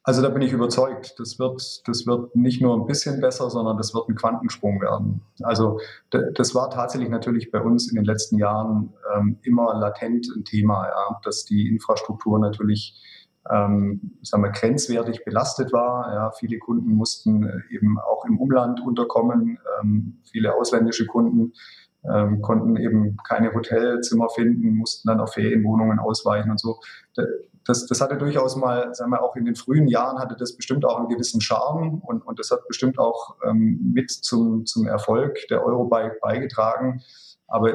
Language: German